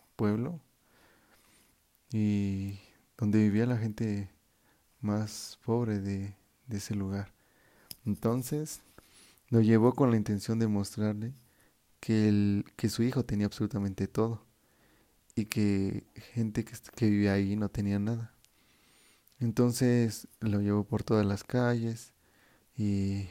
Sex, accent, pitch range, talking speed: male, Mexican, 105-115 Hz, 120 wpm